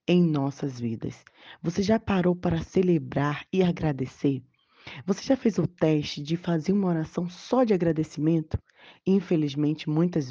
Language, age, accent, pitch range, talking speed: Portuguese, 20-39, Brazilian, 150-185 Hz, 140 wpm